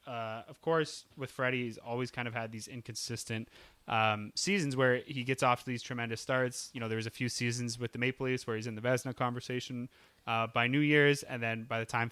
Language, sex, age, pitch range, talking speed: English, male, 20-39, 115-130 Hz, 240 wpm